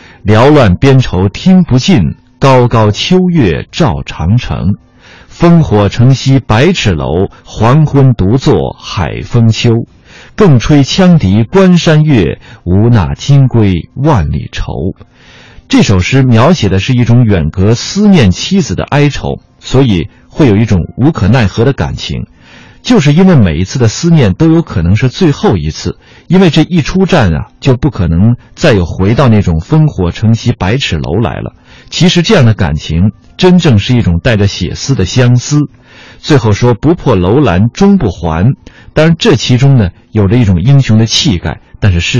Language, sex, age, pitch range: Chinese, male, 50-69, 100-145 Hz